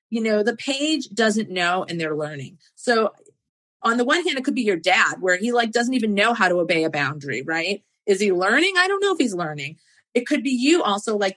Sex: female